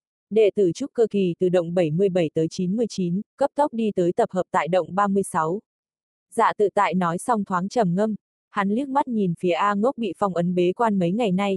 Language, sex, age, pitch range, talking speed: Vietnamese, female, 20-39, 180-220 Hz, 220 wpm